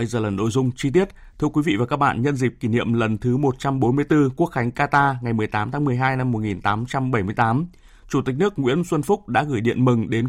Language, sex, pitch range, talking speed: Vietnamese, male, 120-150 Hz, 235 wpm